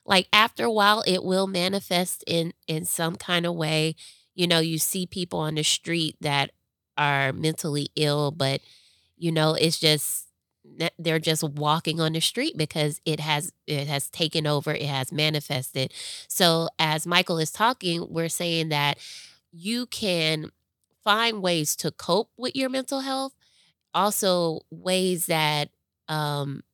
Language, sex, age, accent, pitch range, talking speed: English, female, 20-39, American, 150-185 Hz, 155 wpm